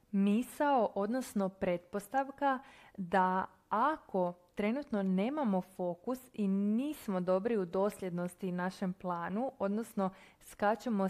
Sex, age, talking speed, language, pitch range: female, 20-39, 90 wpm, Croatian, 185-235 Hz